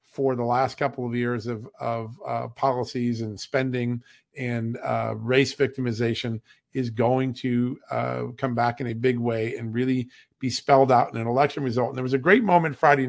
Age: 50-69